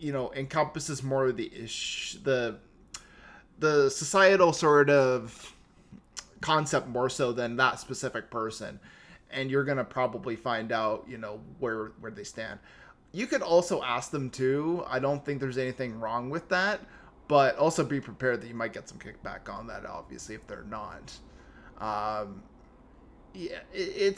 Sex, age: male, 20-39